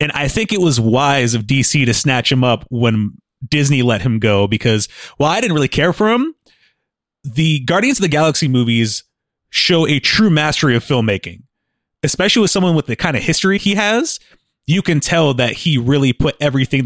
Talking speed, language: 195 wpm, English